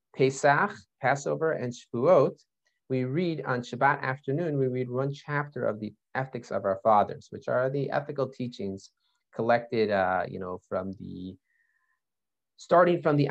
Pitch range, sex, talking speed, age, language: 115-155 Hz, male, 150 wpm, 30-49, English